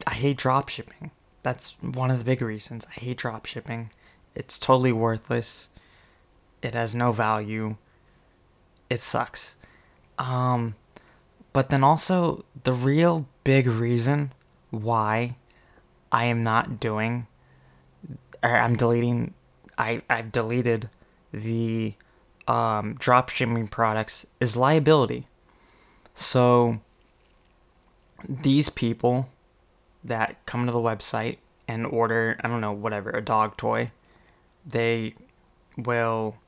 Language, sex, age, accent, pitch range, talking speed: English, male, 20-39, American, 110-125 Hz, 105 wpm